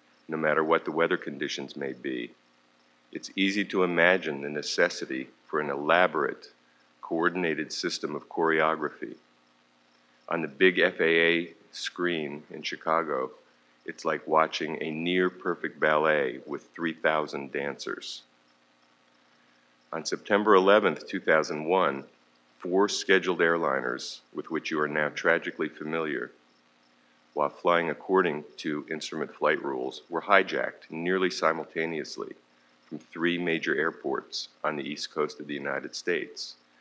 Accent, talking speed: American, 120 wpm